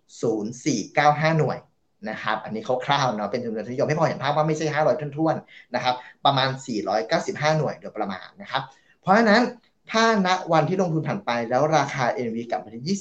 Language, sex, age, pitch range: English, male, 20-39, 125-165 Hz